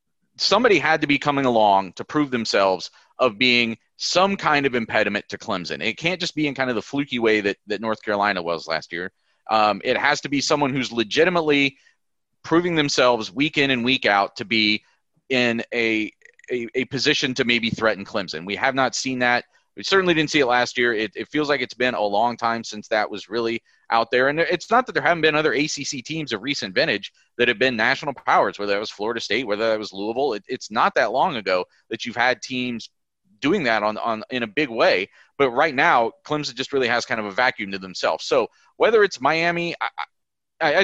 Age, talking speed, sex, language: 30-49, 220 wpm, male, English